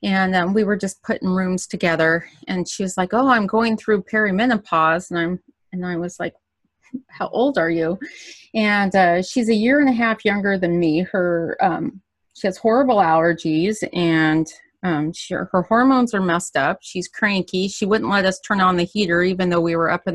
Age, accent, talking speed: 30-49, American, 205 wpm